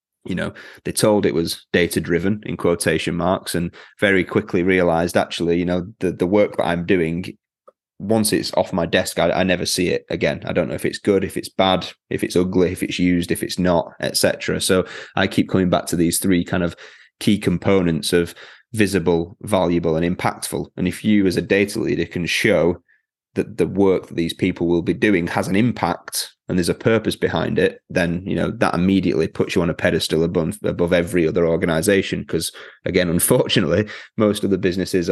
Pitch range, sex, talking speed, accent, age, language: 85-95 Hz, male, 205 wpm, British, 30-49, English